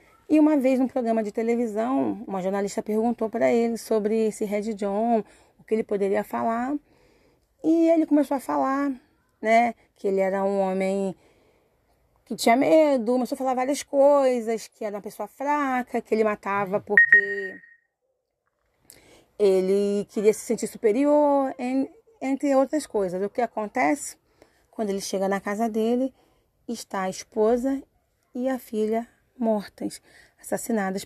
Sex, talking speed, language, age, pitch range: female, 145 wpm, Portuguese, 30-49, 205-255 Hz